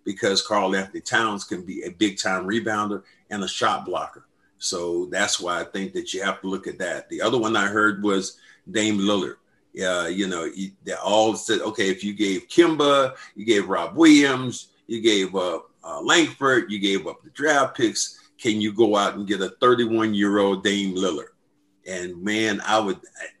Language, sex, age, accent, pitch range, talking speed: English, male, 50-69, American, 100-125 Hz, 185 wpm